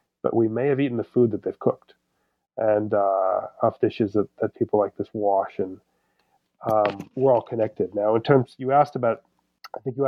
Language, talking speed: English, 200 wpm